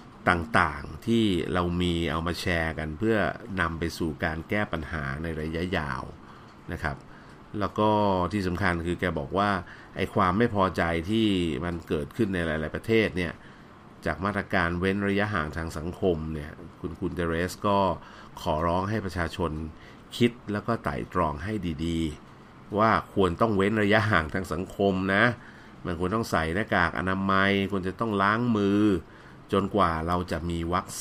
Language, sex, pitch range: Thai, male, 85-105 Hz